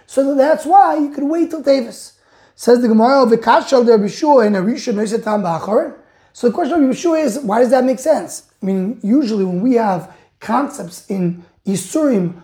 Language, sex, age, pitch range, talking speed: English, male, 20-39, 200-280 Hz, 195 wpm